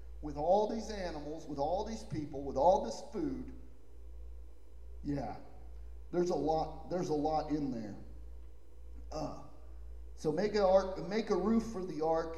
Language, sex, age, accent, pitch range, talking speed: English, male, 40-59, American, 115-165 Hz, 150 wpm